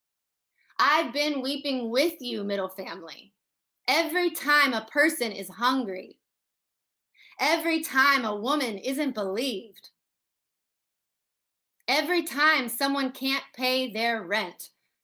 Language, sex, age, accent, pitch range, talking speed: English, female, 20-39, American, 205-270 Hz, 105 wpm